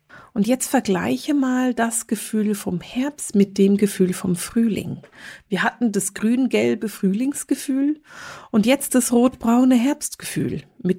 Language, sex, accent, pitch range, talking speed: German, female, German, 180-225 Hz, 130 wpm